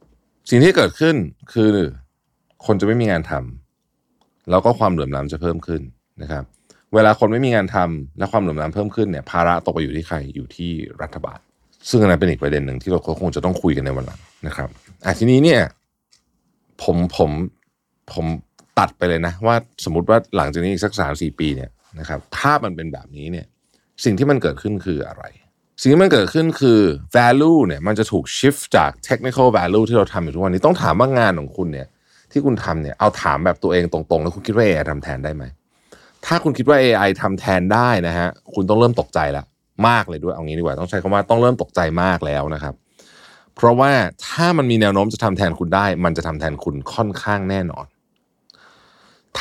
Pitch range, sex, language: 80-110 Hz, male, Thai